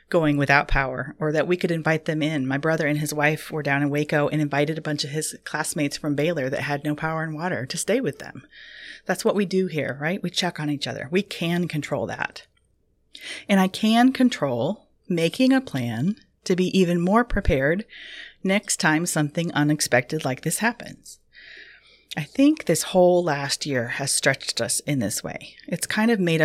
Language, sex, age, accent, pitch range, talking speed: English, female, 30-49, American, 150-195 Hz, 200 wpm